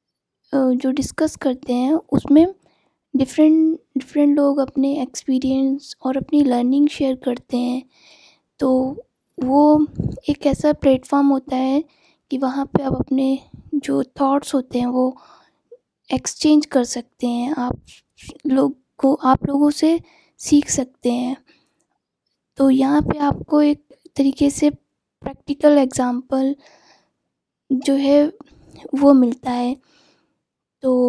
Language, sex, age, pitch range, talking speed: Urdu, female, 20-39, 260-295 Hz, 120 wpm